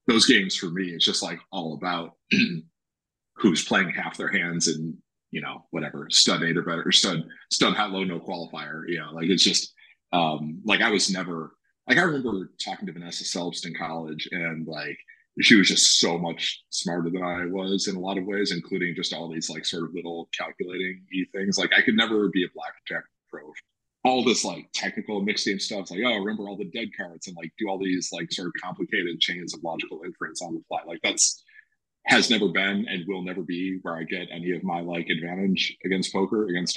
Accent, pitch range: American, 85-100 Hz